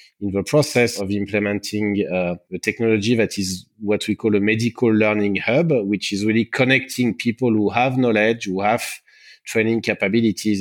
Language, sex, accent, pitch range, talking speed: English, male, French, 100-120 Hz, 165 wpm